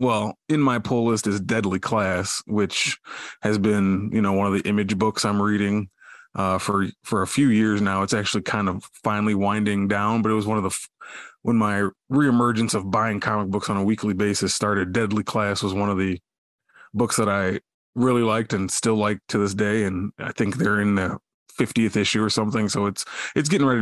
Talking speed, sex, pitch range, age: 215 wpm, male, 100-115 Hz, 20-39